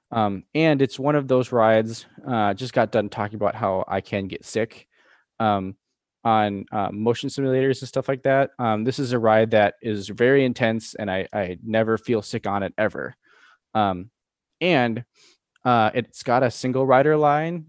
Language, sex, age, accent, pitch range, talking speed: English, male, 20-39, American, 105-125 Hz, 185 wpm